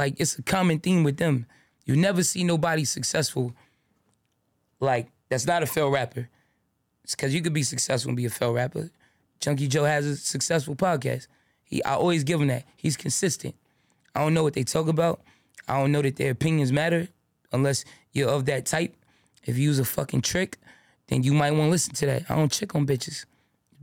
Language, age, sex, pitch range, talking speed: English, 20-39, male, 135-165 Hz, 205 wpm